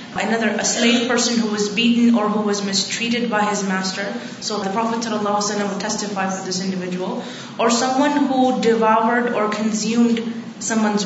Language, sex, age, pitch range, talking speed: Urdu, female, 20-39, 205-230 Hz, 165 wpm